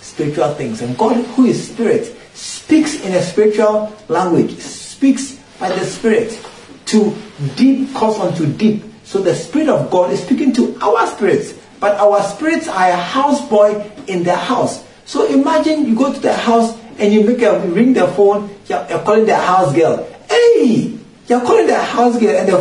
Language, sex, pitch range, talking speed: English, male, 165-240 Hz, 180 wpm